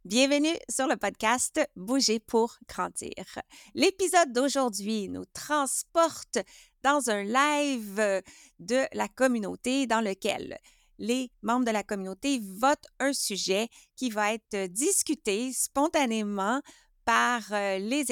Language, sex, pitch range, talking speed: French, female, 210-280 Hz, 120 wpm